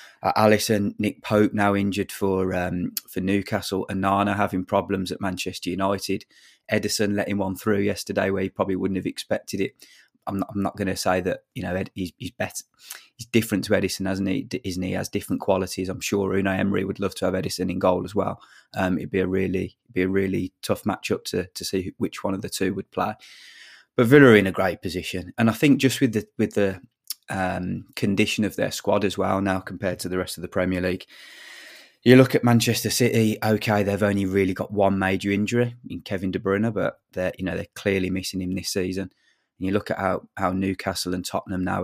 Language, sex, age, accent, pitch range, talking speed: English, male, 20-39, British, 95-100 Hz, 220 wpm